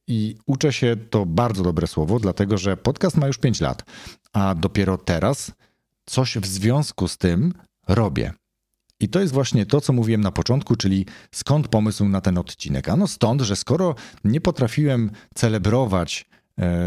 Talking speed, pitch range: 165 wpm, 95-130 Hz